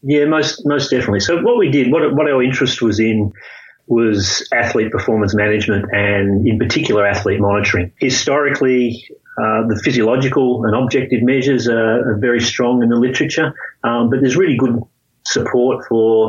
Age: 30-49